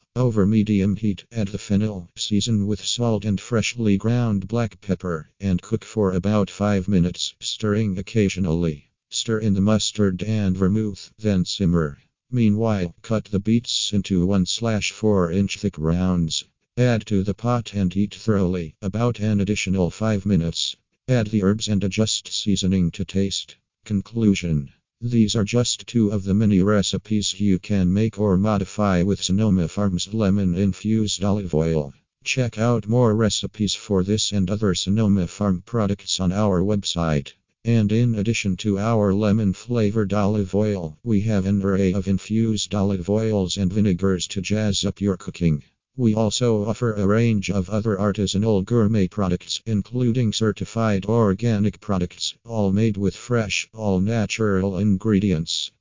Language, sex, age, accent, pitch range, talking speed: English, male, 50-69, American, 95-110 Hz, 145 wpm